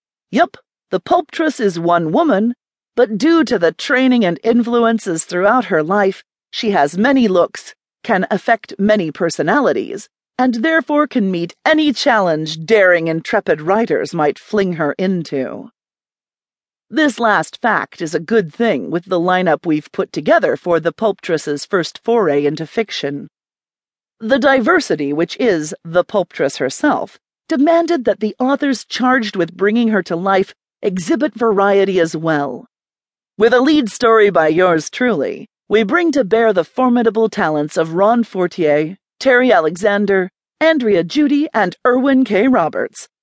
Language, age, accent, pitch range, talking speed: English, 40-59, American, 170-250 Hz, 140 wpm